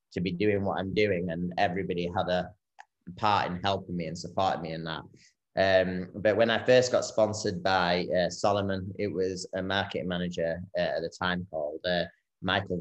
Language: English